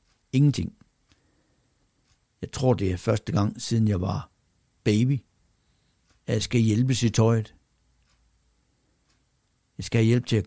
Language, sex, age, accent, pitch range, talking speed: Danish, male, 60-79, native, 100-125 Hz, 130 wpm